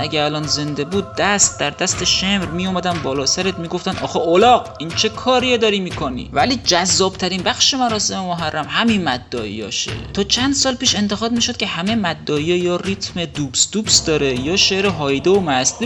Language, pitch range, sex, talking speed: Persian, 165-225 Hz, male, 180 wpm